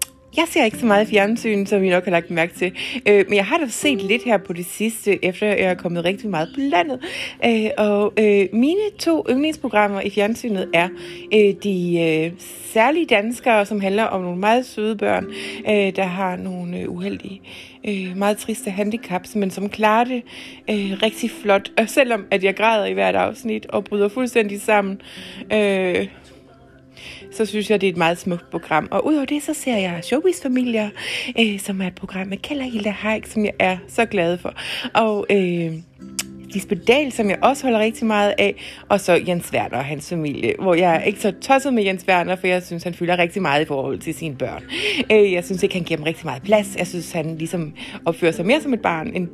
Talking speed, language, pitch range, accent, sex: 210 wpm, Danish, 175-220 Hz, native, female